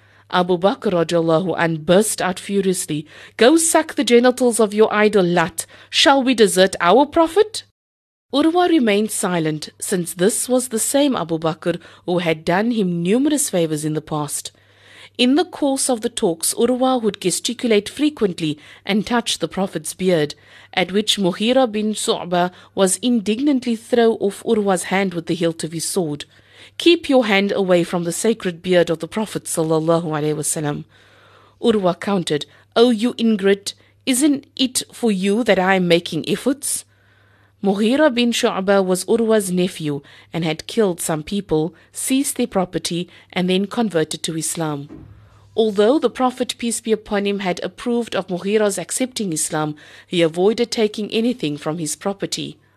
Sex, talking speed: female, 155 wpm